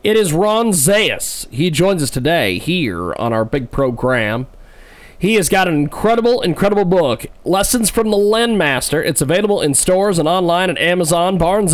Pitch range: 130-195 Hz